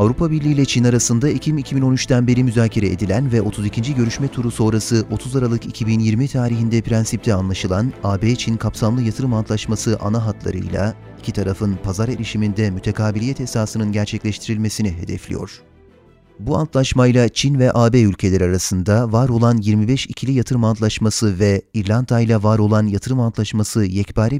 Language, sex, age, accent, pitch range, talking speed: Turkish, male, 30-49, native, 105-125 Hz, 140 wpm